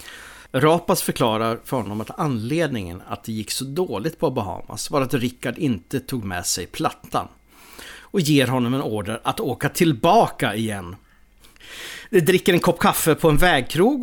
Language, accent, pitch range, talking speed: English, Swedish, 110-155 Hz, 165 wpm